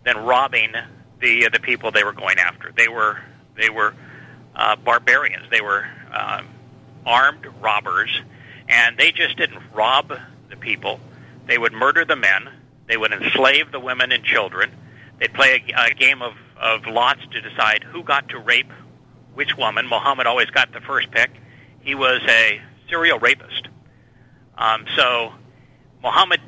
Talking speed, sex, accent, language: 160 wpm, male, American, English